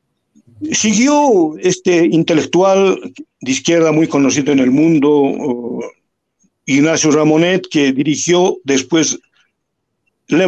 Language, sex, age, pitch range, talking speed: English, male, 60-79, 145-195 Hz, 90 wpm